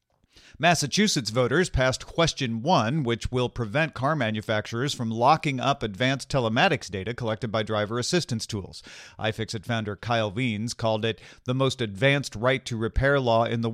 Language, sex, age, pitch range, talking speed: English, male, 40-59, 110-145 Hz, 155 wpm